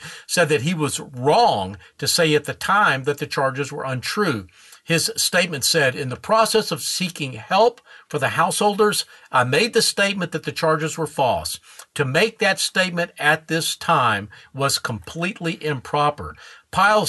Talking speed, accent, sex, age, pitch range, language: 165 wpm, American, male, 50-69, 130-170 Hz, English